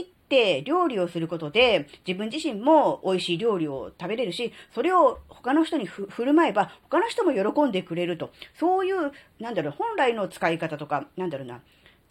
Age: 40-59